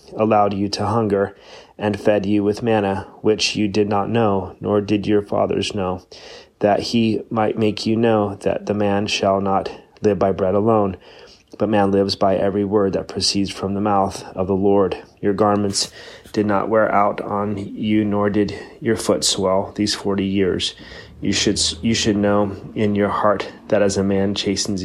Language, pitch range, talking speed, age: English, 100-105 Hz, 185 wpm, 30-49